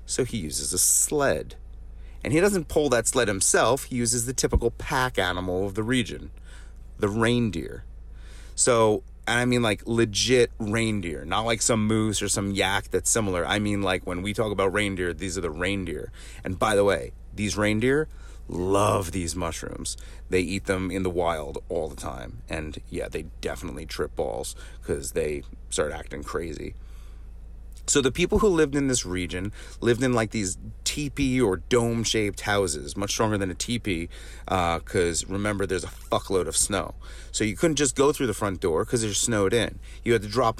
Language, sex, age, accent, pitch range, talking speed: English, male, 30-49, American, 85-115 Hz, 185 wpm